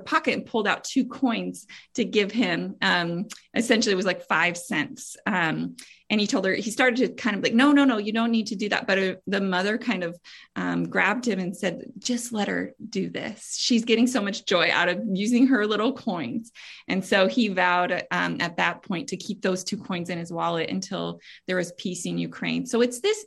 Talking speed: 225 wpm